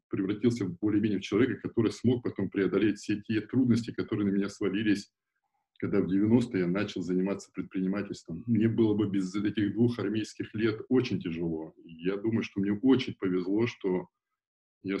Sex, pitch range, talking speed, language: male, 90-115 Hz, 160 wpm, Russian